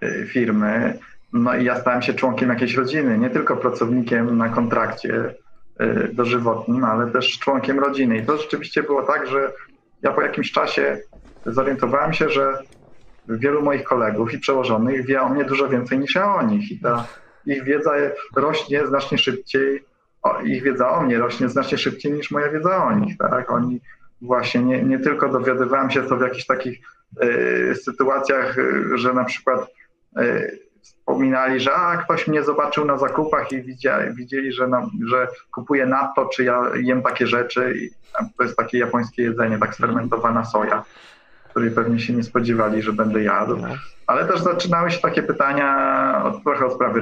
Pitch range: 120-155 Hz